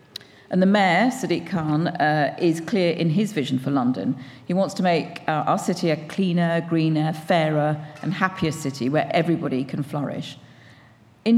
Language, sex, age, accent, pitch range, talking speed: English, female, 40-59, British, 145-180 Hz, 170 wpm